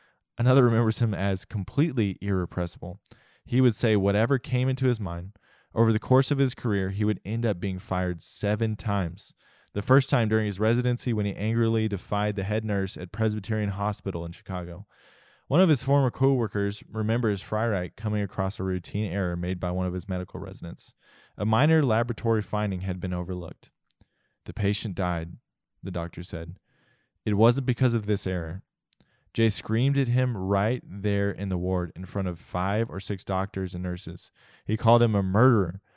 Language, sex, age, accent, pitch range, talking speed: English, male, 20-39, American, 95-115 Hz, 180 wpm